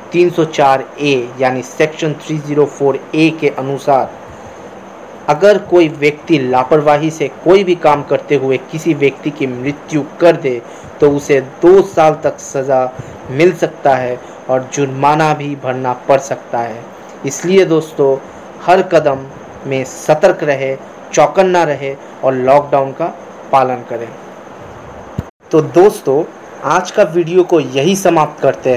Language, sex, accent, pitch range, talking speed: Hindi, male, native, 135-165 Hz, 130 wpm